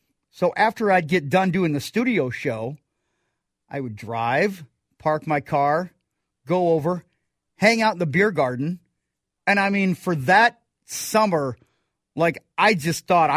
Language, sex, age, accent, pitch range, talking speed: English, male, 40-59, American, 145-190 Hz, 150 wpm